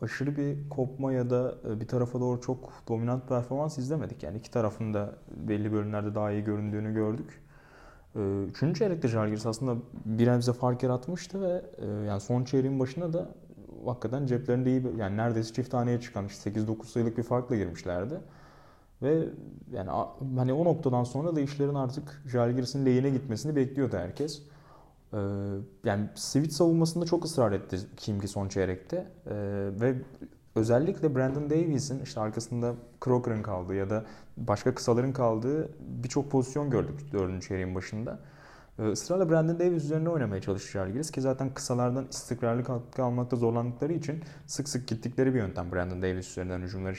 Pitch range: 105-140 Hz